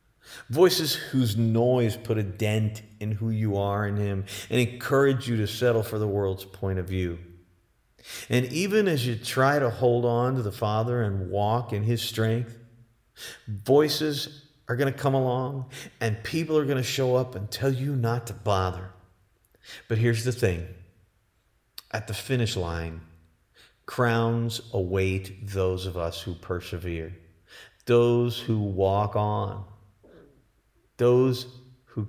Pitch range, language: 100-120 Hz, English